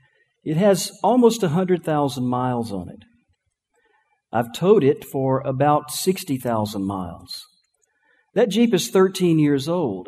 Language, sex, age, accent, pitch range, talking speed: English, male, 50-69, American, 130-210 Hz, 120 wpm